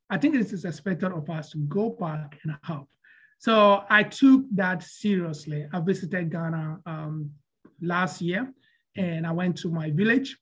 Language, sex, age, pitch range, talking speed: English, male, 30-49, 165-205 Hz, 165 wpm